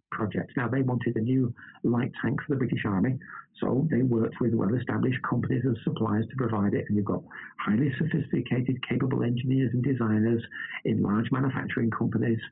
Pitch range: 110-130 Hz